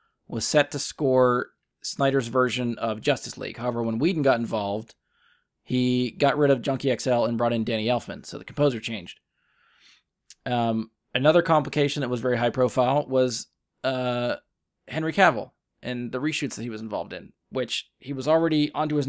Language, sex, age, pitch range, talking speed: English, male, 20-39, 125-150 Hz, 175 wpm